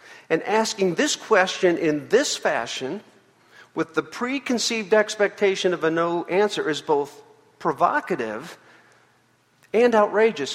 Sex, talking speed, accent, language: male, 115 wpm, American, English